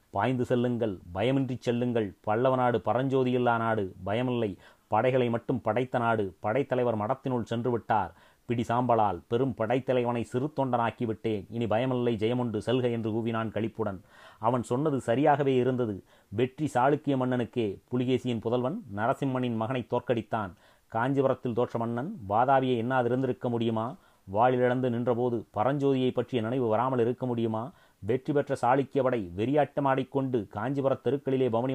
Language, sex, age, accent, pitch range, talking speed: Tamil, male, 30-49, native, 115-130 Hz, 115 wpm